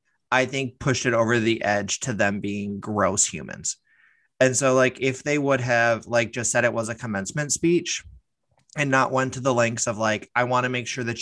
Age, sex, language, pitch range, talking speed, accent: 20-39, male, English, 115-135 Hz, 220 wpm, American